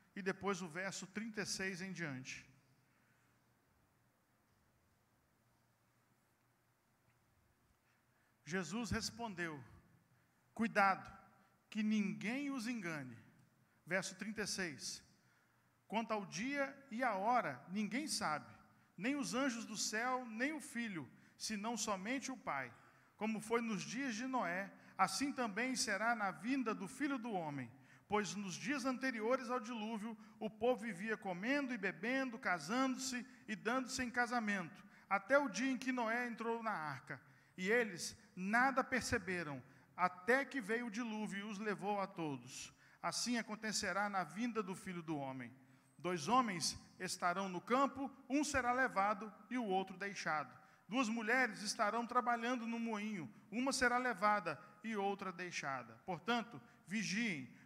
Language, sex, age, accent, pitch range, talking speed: Portuguese, male, 50-69, Brazilian, 180-245 Hz, 130 wpm